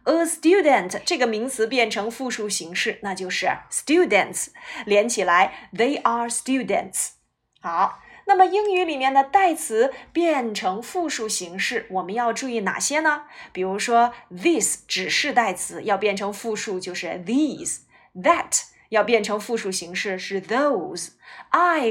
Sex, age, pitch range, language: female, 20-39, 195-310 Hz, Chinese